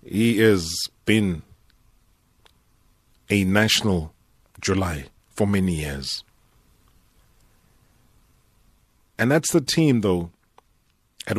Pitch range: 95-125 Hz